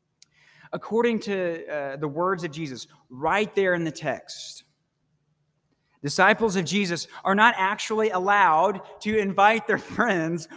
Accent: American